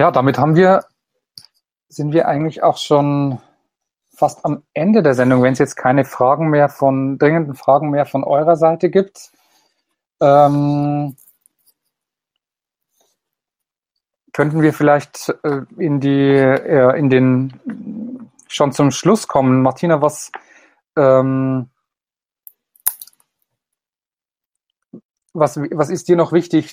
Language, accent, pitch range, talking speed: German, German, 130-155 Hz, 105 wpm